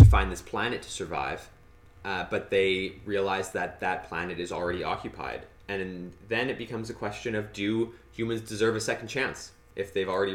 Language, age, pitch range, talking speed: English, 20-39, 85-105 Hz, 180 wpm